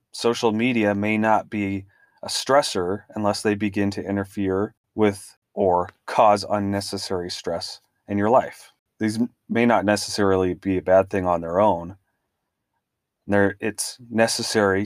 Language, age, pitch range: English, 30-49, 95-110 Hz